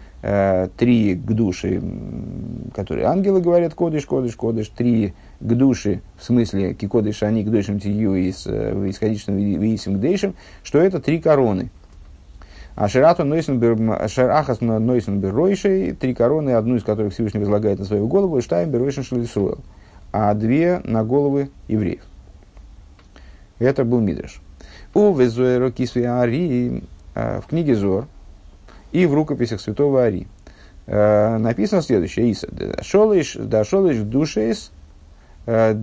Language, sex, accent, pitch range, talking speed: Russian, male, native, 95-130 Hz, 110 wpm